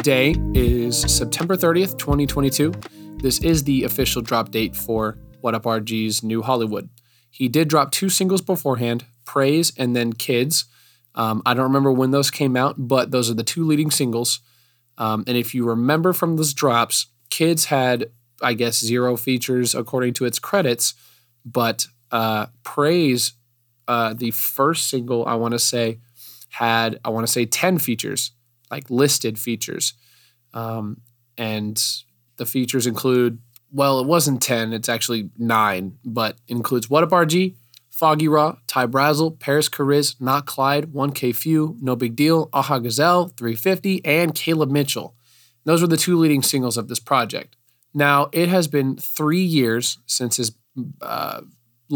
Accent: American